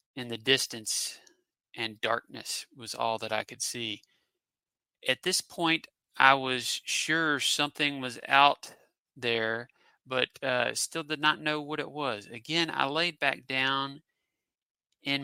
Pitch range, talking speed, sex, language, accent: 125-150 Hz, 140 wpm, male, English, American